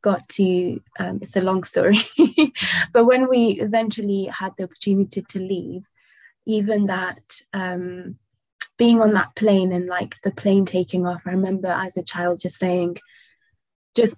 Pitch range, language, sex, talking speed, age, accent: 185-220 Hz, English, female, 155 wpm, 20-39, British